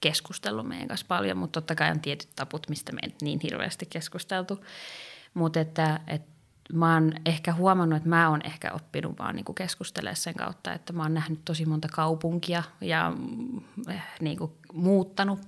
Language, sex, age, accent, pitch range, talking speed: Finnish, female, 20-39, native, 155-185 Hz, 170 wpm